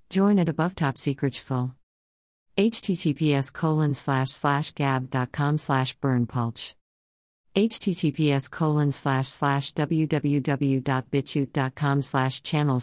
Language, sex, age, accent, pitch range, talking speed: English, female, 50-69, American, 130-155 Hz, 85 wpm